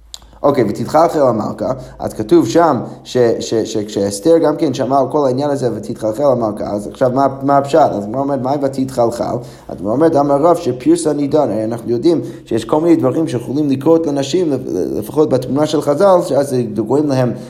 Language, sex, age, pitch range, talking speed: Hebrew, male, 20-39, 120-160 Hz, 170 wpm